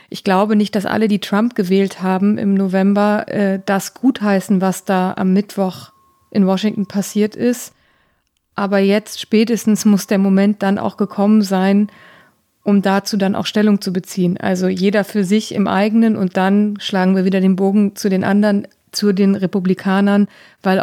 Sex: female